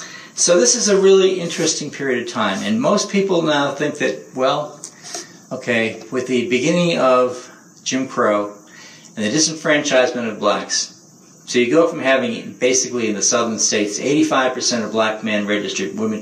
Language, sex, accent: English, male, American